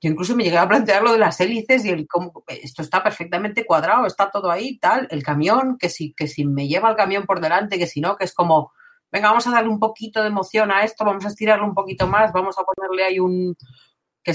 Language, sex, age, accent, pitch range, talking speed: Spanish, female, 40-59, Spanish, 150-220 Hz, 245 wpm